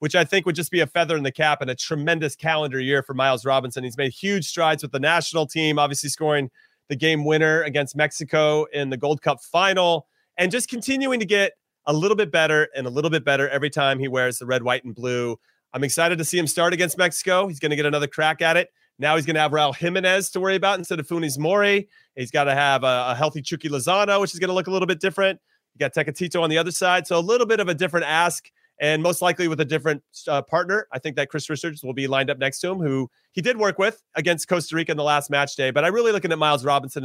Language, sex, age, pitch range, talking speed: English, male, 30-49, 145-175 Hz, 265 wpm